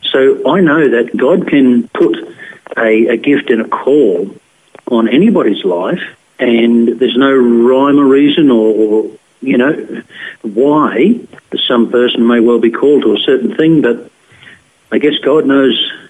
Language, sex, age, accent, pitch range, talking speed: English, male, 50-69, Australian, 115-155 Hz, 155 wpm